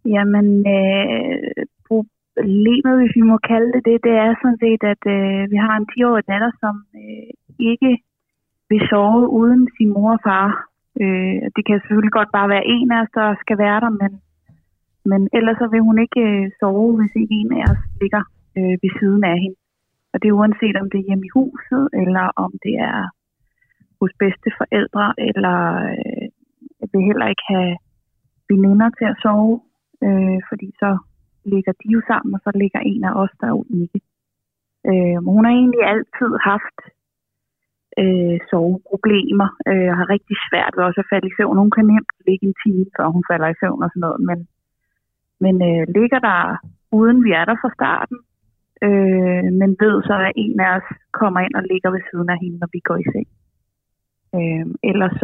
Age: 30-49